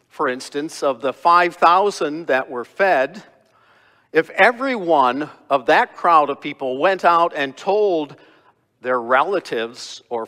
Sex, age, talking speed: male, 50-69, 135 wpm